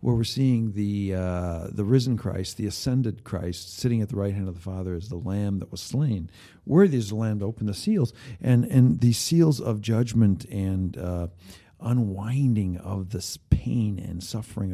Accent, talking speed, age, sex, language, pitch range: American, 190 wpm, 50-69, male, English, 105-135 Hz